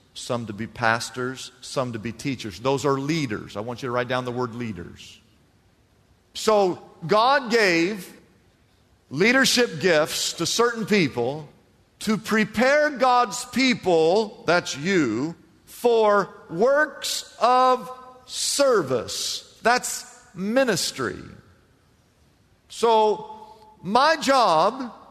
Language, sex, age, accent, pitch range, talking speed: English, male, 50-69, American, 155-240 Hz, 105 wpm